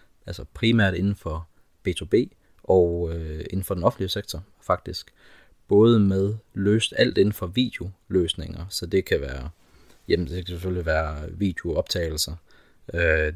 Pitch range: 80-95 Hz